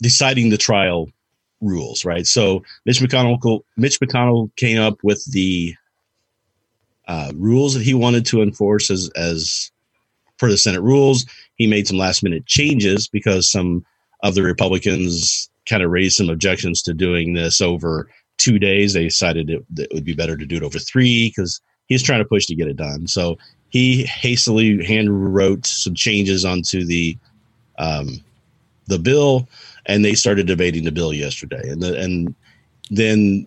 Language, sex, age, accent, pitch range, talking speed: English, male, 40-59, American, 90-115 Hz, 170 wpm